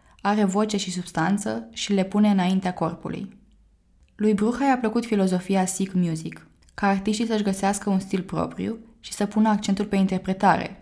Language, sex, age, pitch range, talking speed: Romanian, female, 20-39, 180-215 Hz, 160 wpm